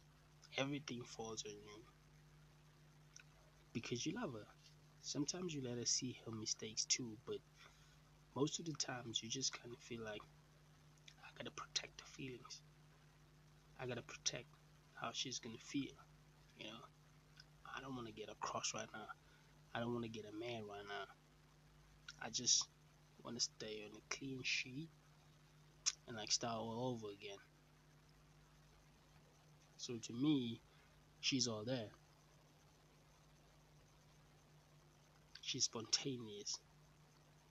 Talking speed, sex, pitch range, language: 135 wpm, male, 115-150 Hz, English